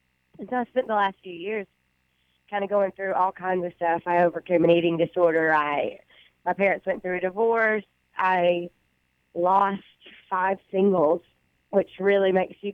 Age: 20-39